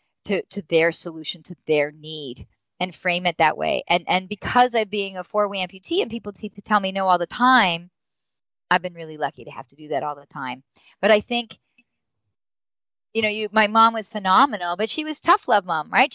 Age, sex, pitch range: 40-59, female, 165-225 Hz